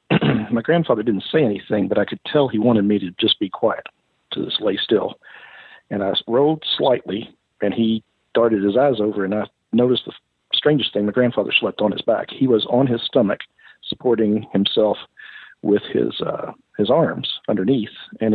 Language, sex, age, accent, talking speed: English, male, 50-69, American, 185 wpm